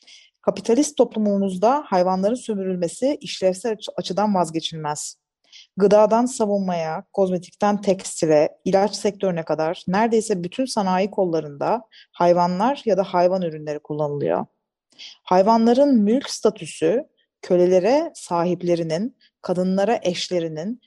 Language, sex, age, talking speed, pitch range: Turkish, female, 30-49, 90 wpm, 175-230 Hz